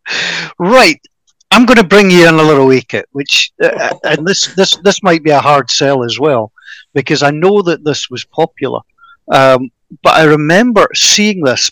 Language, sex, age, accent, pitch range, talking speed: English, male, 50-69, British, 145-205 Hz, 190 wpm